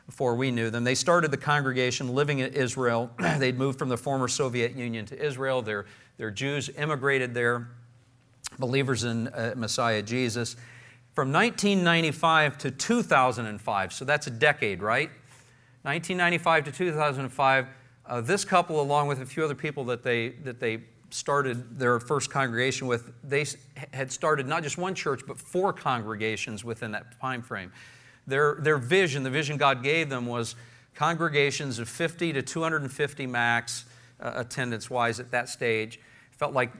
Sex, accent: male, American